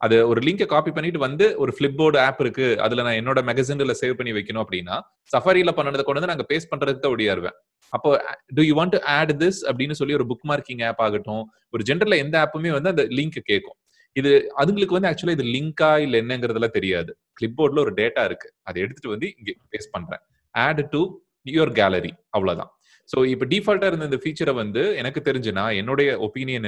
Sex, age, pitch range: male, 30-49, 115-165 Hz